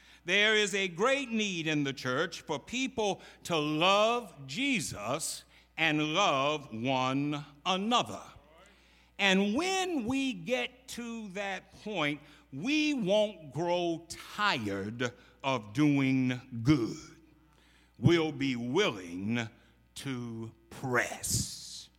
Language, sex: English, male